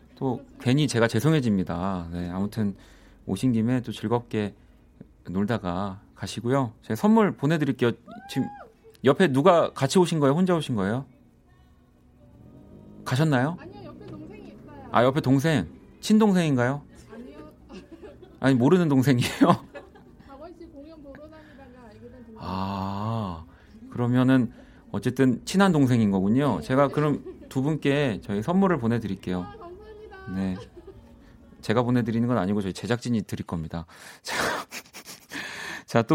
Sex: male